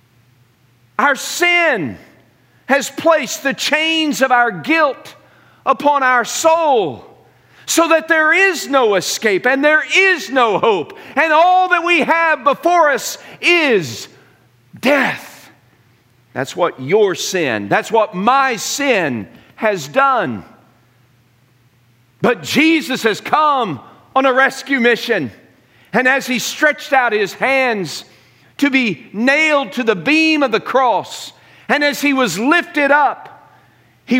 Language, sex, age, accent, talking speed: English, male, 50-69, American, 130 wpm